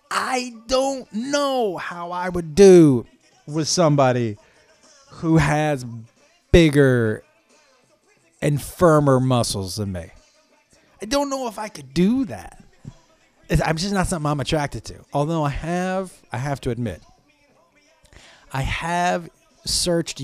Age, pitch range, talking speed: 30-49, 130-195 Hz, 125 wpm